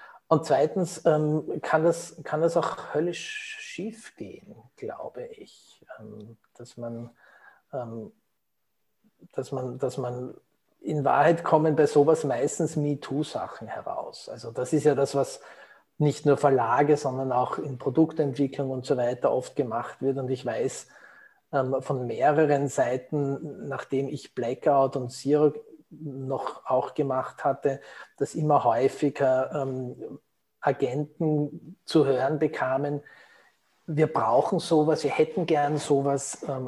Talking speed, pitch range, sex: 125 wpm, 135-155 Hz, male